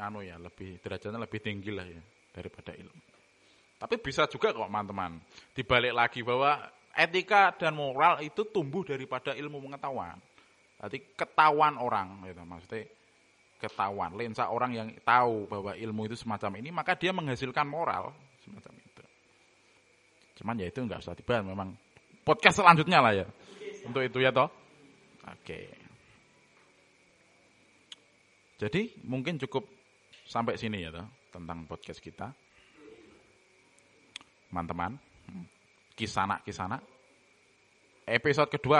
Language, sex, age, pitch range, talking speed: Malay, male, 20-39, 100-135 Hz, 120 wpm